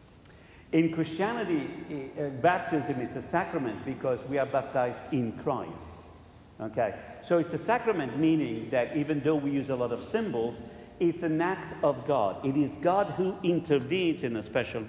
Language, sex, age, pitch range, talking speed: English, male, 50-69, 115-155 Hz, 160 wpm